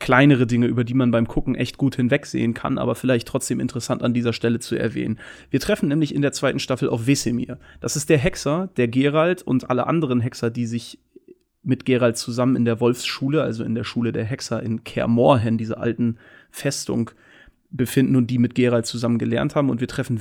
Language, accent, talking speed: German, German, 205 wpm